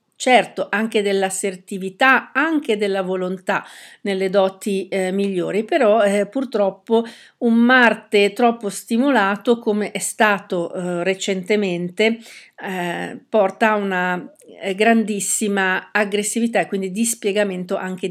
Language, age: Italian, 50-69